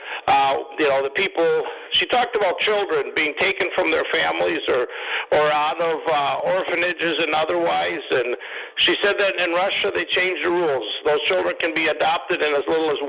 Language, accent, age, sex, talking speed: English, American, 50-69, male, 190 wpm